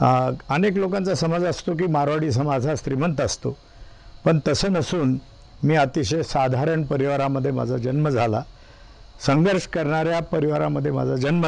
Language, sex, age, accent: Marathi, male, 50-69, native